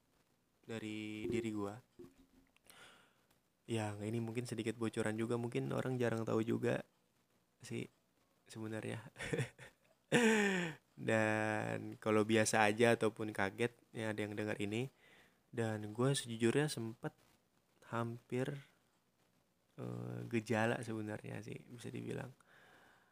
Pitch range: 105-120 Hz